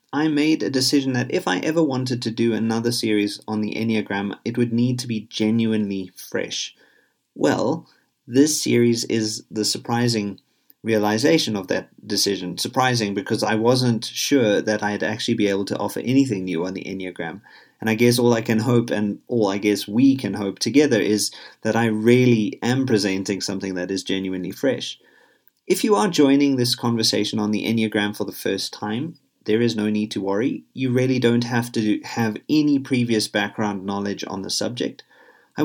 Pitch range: 105-125 Hz